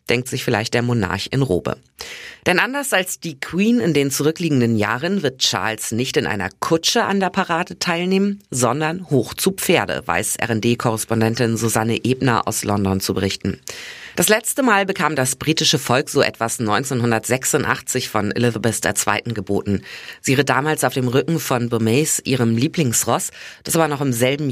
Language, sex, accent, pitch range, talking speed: German, female, German, 115-165 Hz, 165 wpm